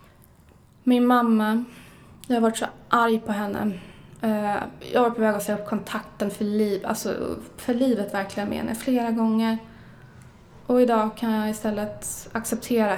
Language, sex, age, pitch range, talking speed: Swedish, female, 20-39, 215-255 Hz, 155 wpm